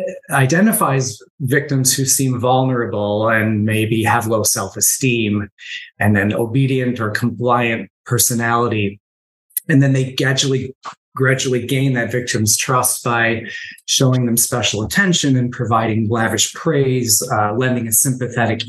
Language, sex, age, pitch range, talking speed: English, male, 30-49, 115-135 Hz, 120 wpm